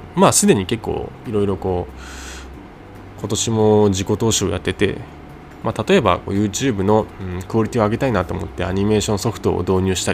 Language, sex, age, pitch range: Japanese, male, 20-39, 90-110 Hz